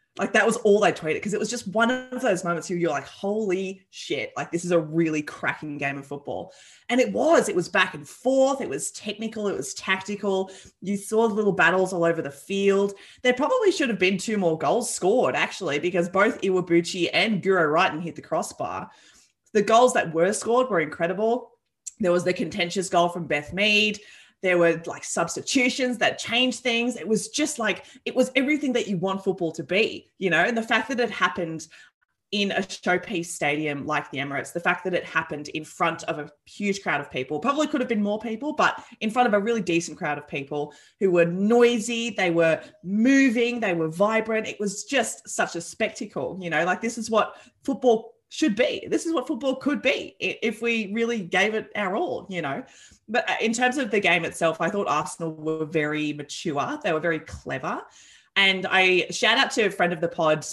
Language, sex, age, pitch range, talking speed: English, female, 20-39, 170-230 Hz, 215 wpm